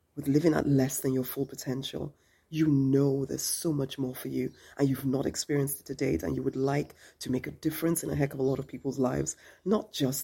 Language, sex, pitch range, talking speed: English, female, 130-160 Hz, 245 wpm